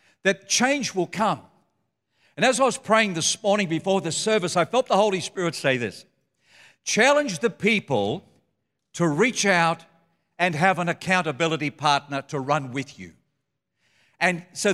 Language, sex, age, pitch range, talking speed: English, male, 60-79, 145-200 Hz, 155 wpm